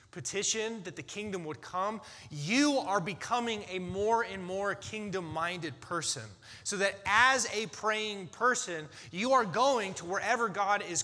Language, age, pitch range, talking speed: English, 30-49, 165-225 Hz, 150 wpm